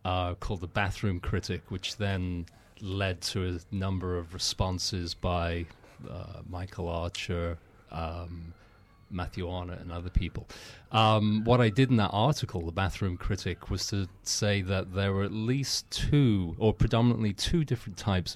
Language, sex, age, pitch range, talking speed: English, male, 30-49, 90-105 Hz, 155 wpm